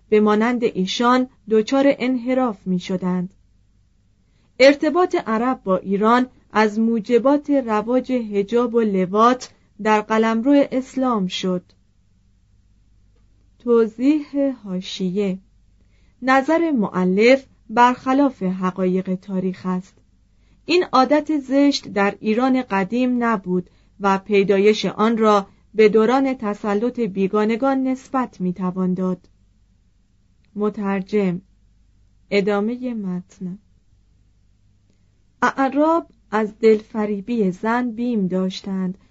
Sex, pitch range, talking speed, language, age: female, 185-245 Hz, 85 wpm, Persian, 30-49